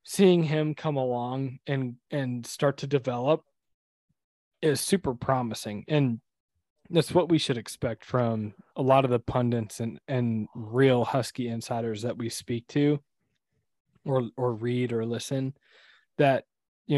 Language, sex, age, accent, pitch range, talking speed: English, male, 20-39, American, 115-140 Hz, 140 wpm